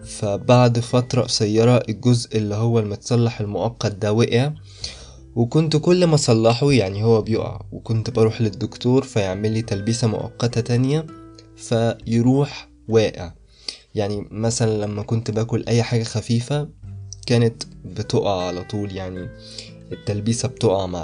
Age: 20-39